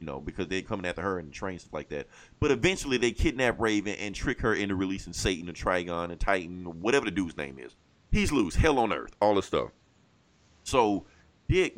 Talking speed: 225 wpm